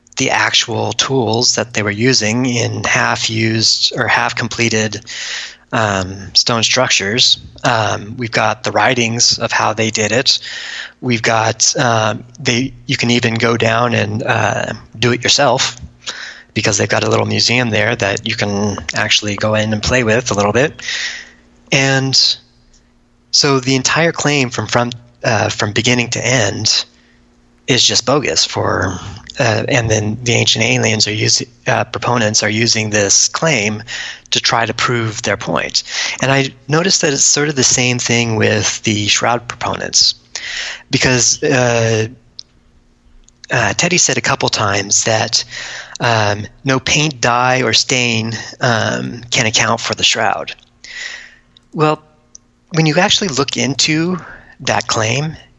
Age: 20-39